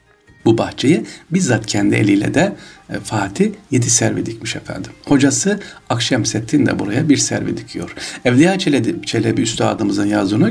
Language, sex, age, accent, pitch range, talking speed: Turkish, male, 60-79, native, 110-145 Hz, 135 wpm